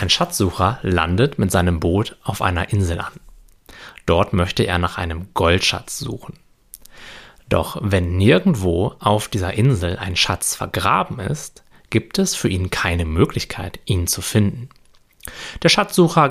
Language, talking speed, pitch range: German, 140 wpm, 90-115 Hz